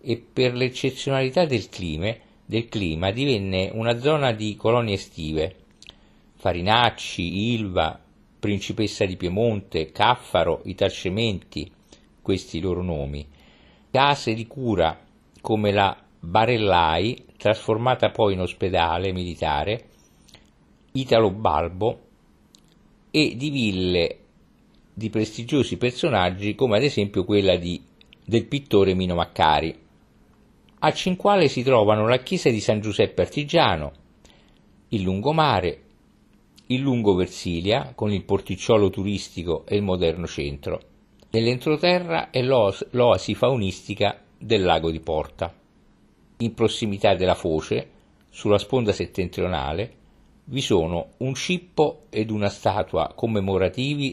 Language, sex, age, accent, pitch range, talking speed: Italian, male, 50-69, native, 95-125 Hz, 110 wpm